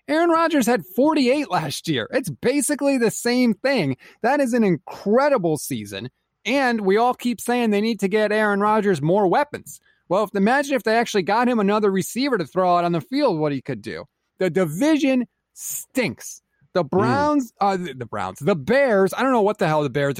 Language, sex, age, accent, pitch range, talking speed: English, male, 30-49, American, 165-230 Hz, 195 wpm